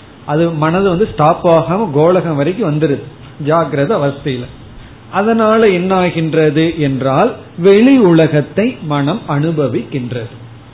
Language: Tamil